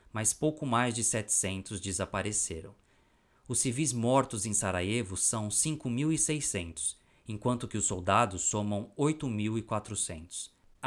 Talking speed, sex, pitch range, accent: 105 wpm, male, 100-125 Hz, Brazilian